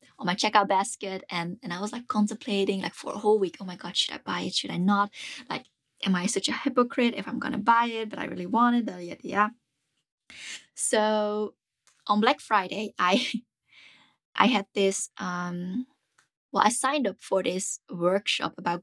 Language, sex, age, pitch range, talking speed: English, female, 20-39, 170-215 Hz, 190 wpm